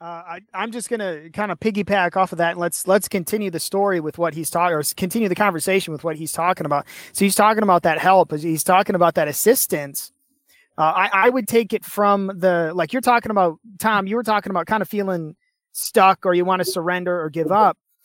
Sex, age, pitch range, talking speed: male, 30-49, 180-230 Hz, 235 wpm